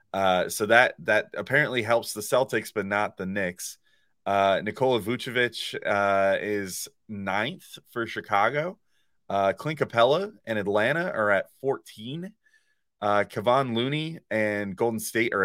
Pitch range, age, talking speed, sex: 105-140 Hz, 30-49, 130 wpm, male